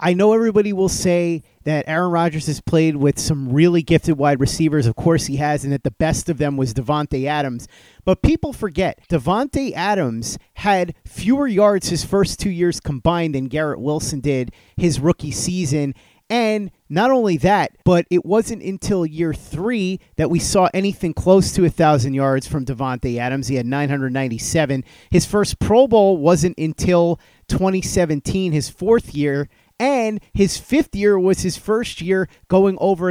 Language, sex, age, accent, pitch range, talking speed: English, male, 30-49, American, 140-180 Hz, 170 wpm